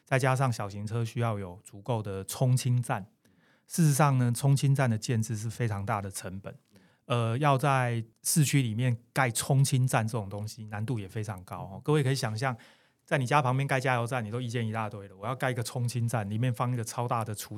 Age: 30-49